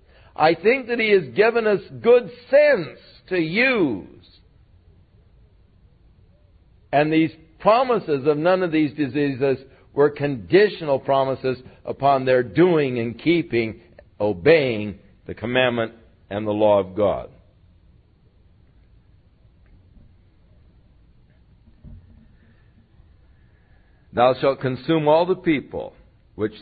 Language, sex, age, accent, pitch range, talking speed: English, male, 60-79, American, 100-150 Hz, 95 wpm